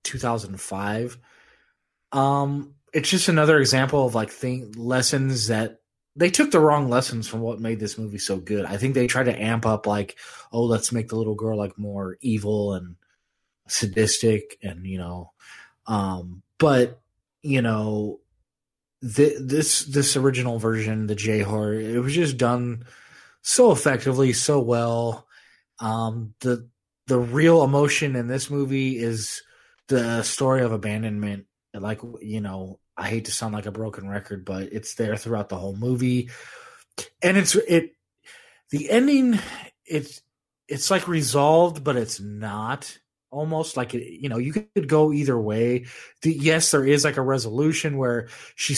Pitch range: 110-140 Hz